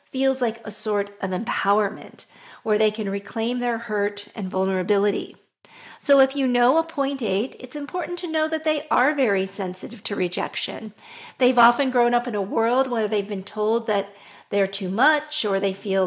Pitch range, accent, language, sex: 205-260 Hz, American, English, female